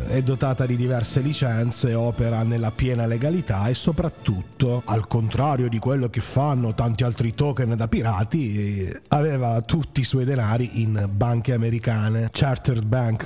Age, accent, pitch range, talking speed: 30-49, native, 115-130 Hz, 145 wpm